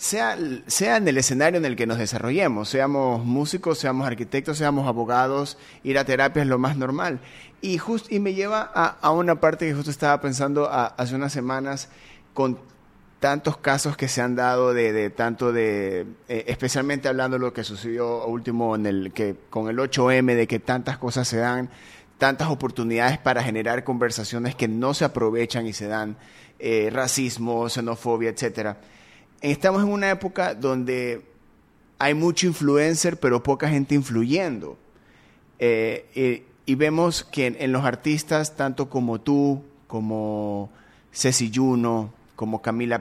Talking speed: 160 wpm